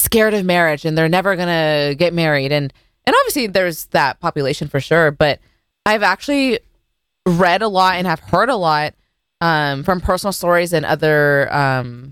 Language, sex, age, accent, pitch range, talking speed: English, female, 20-39, American, 150-190 Hz, 175 wpm